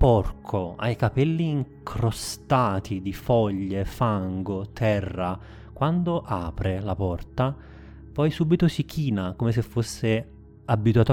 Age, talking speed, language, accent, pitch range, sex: 30-49, 110 wpm, Italian, native, 95-125 Hz, male